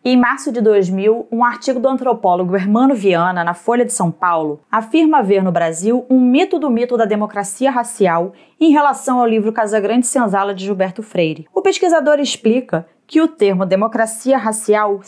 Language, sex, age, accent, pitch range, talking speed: Portuguese, female, 30-49, Brazilian, 185-250 Hz, 175 wpm